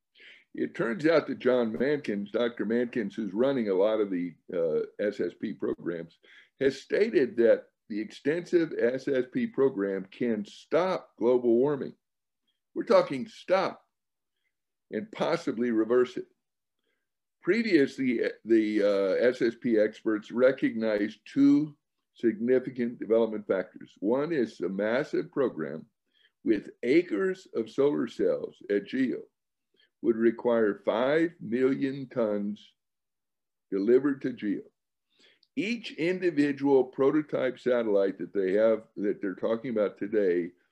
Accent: American